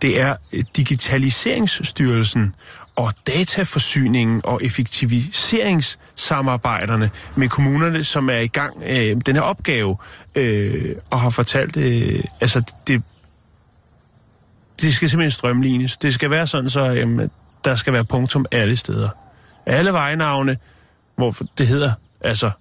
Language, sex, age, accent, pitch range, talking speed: Danish, male, 30-49, native, 115-155 Hz, 125 wpm